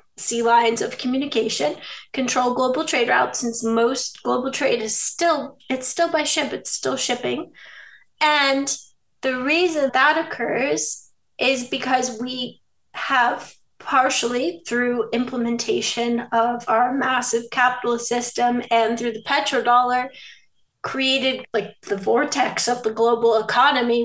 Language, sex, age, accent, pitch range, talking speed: English, female, 30-49, American, 235-275 Hz, 125 wpm